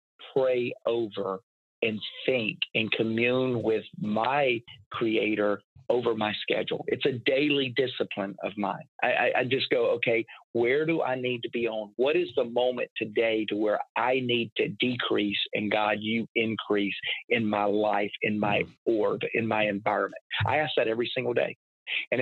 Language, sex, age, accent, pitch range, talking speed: English, male, 40-59, American, 105-130 Hz, 165 wpm